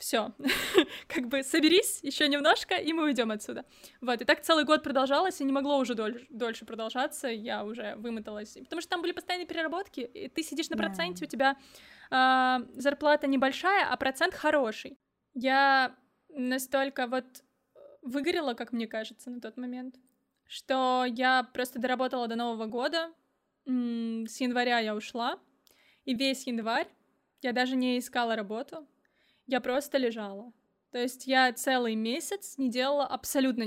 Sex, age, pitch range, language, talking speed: female, 20-39, 250-295 Hz, Russian, 150 wpm